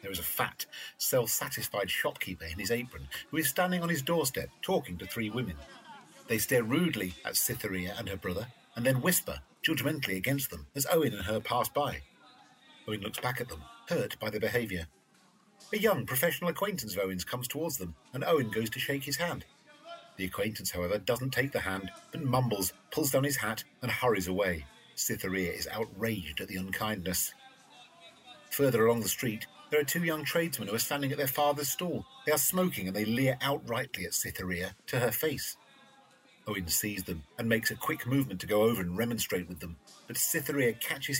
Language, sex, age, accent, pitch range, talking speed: English, male, 50-69, British, 95-155 Hz, 190 wpm